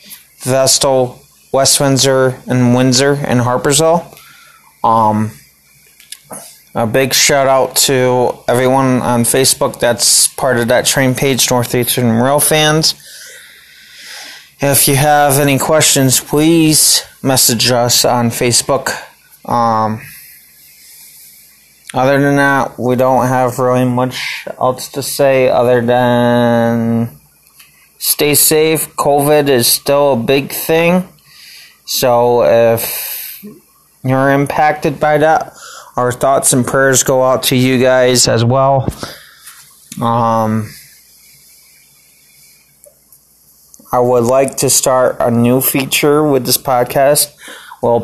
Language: English